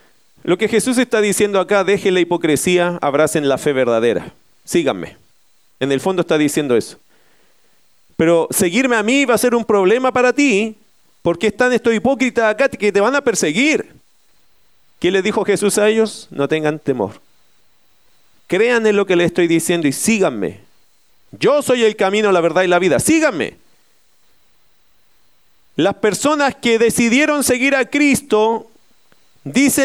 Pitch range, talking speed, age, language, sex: 195-260 Hz, 155 wpm, 40-59, Spanish, male